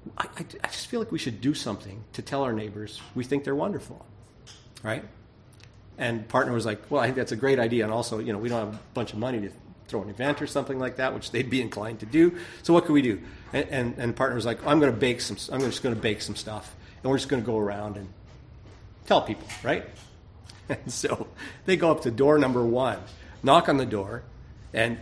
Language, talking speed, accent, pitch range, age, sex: English, 245 wpm, American, 105-130 Hz, 40-59, male